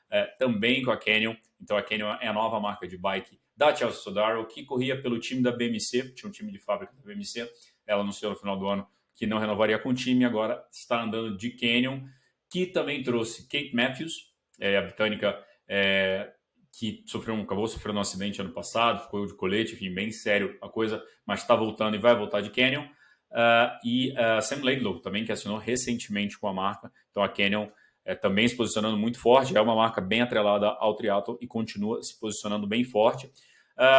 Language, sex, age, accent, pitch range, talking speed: Portuguese, male, 30-49, Brazilian, 100-125 Hz, 205 wpm